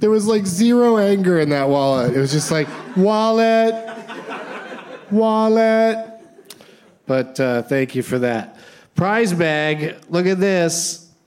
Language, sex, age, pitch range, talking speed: English, male, 30-49, 115-150 Hz, 135 wpm